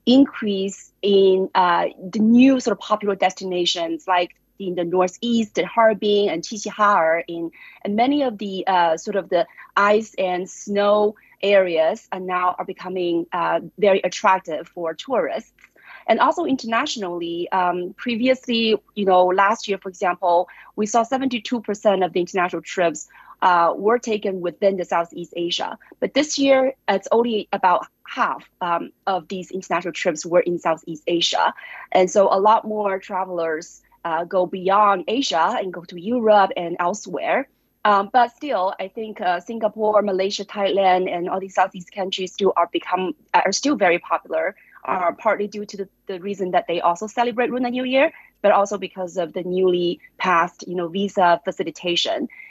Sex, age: female, 30-49